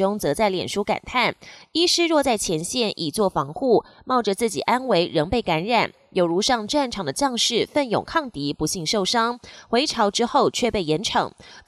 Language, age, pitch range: Chinese, 20-39, 175-245 Hz